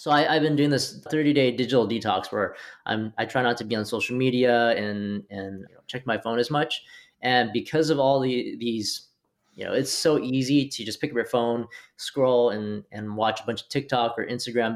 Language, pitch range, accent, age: English, 110-130 Hz, American, 20-39